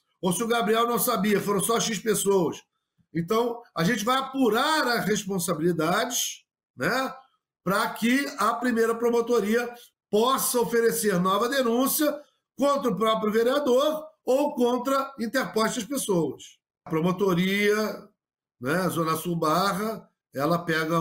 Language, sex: Portuguese, male